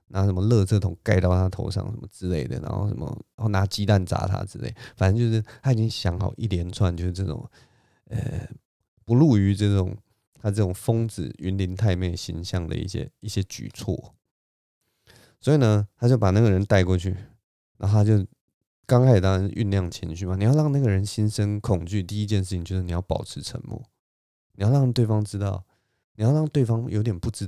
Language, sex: Chinese, male